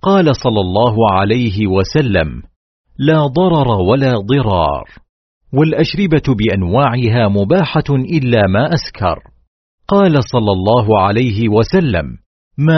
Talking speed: 100 wpm